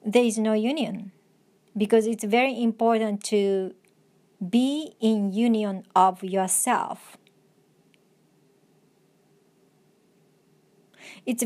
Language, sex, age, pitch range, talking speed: English, male, 40-59, 195-235 Hz, 80 wpm